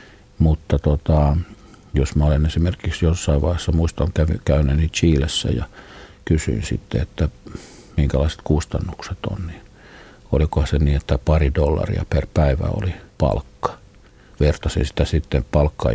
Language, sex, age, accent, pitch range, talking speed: Finnish, male, 50-69, native, 75-95 Hz, 125 wpm